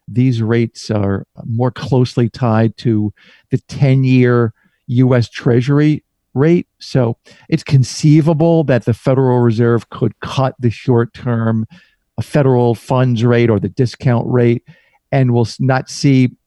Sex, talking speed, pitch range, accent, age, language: male, 125 wpm, 115-135 Hz, American, 50-69, English